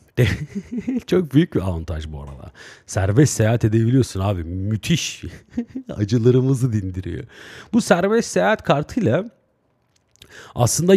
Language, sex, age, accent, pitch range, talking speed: Turkish, male, 40-59, native, 100-155 Hz, 100 wpm